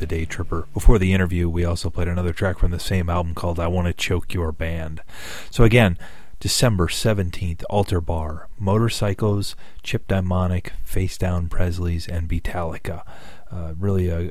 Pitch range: 85-95 Hz